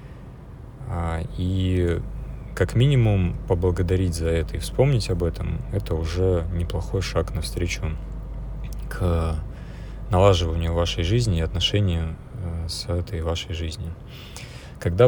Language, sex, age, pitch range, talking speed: Russian, male, 30-49, 80-100 Hz, 105 wpm